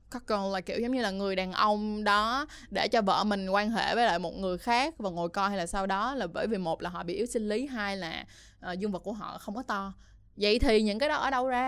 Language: Vietnamese